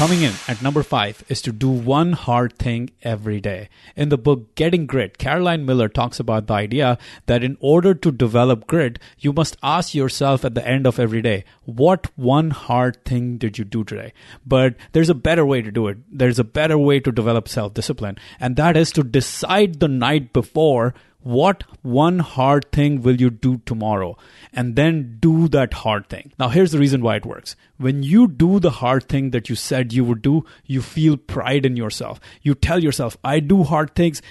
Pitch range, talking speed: 120-150 Hz, 205 wpm